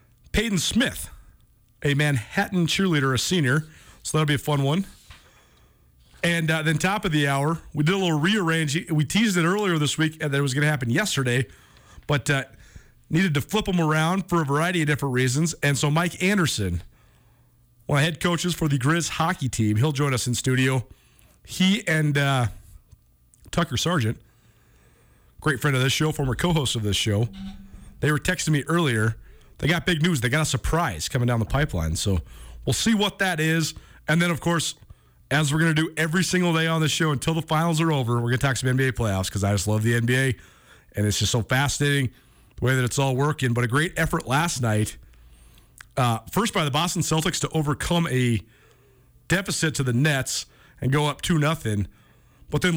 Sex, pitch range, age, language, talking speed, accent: male, 120-165 Hz, 40-59, English, 200 wpm, American